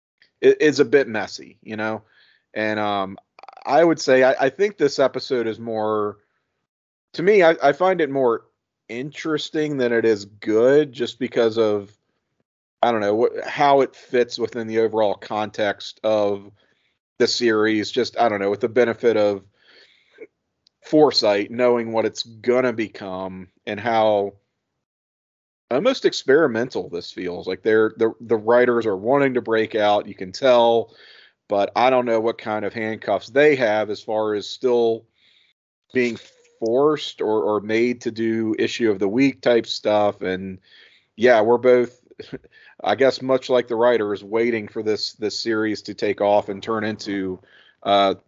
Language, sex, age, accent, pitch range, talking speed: English, male, 40-59, American, 105-130 Hz, 160 wpm